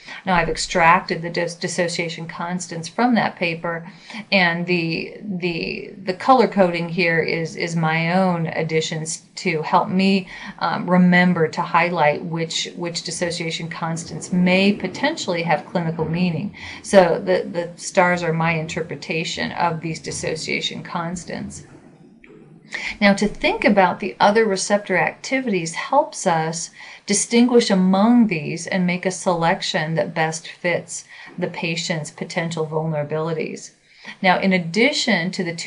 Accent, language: American, English